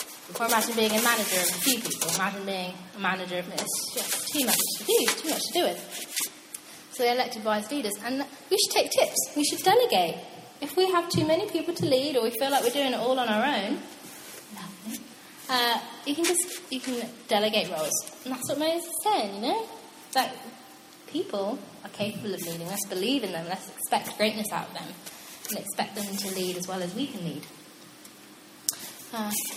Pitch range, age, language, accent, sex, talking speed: 210-290 Hz, 20-39, English, British, female, 205 wpm